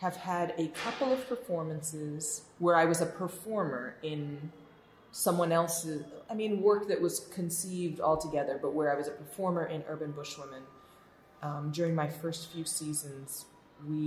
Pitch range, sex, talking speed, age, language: 145-170 Hz, female, 160 wpm, 20-39, English